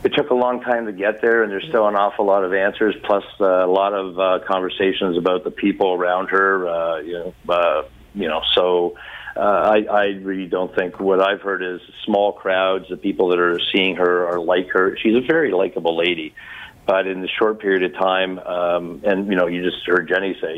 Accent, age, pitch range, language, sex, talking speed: American, 50-69, 85-95 Hz, English, male, 220 wpm